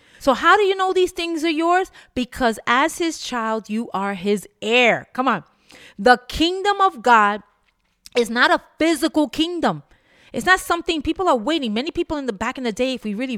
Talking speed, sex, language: 200 wpm, female, English